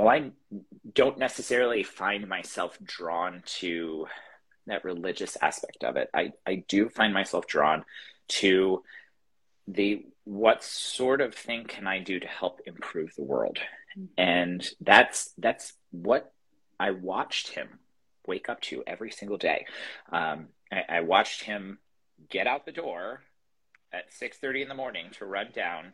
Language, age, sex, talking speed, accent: English, 30-49, male, 145 wpm, American